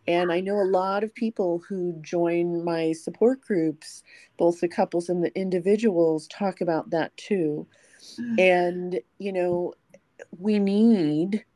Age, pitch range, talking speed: 40-59, 150-180 Hz, 140 wpm